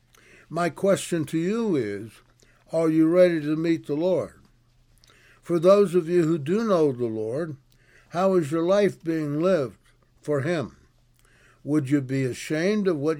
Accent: American